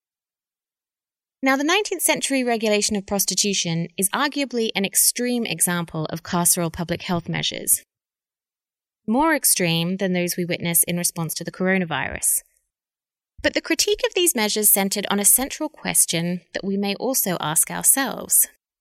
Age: 20-39